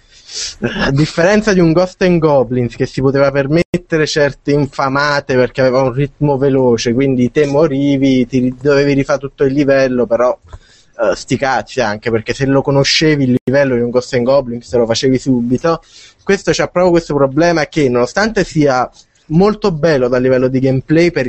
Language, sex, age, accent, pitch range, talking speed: Italian, male, 20-39, native, 125-150 Hz, 175 wpm